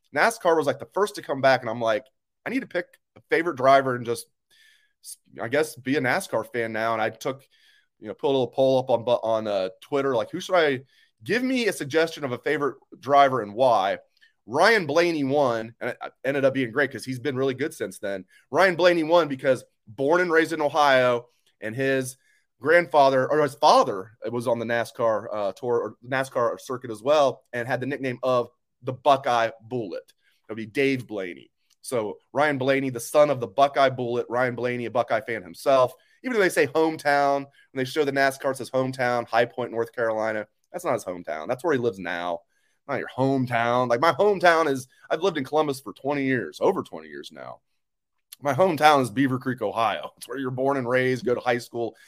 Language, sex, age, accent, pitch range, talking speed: English, male, 30-49, American, 120-155 Hz, 210 wpm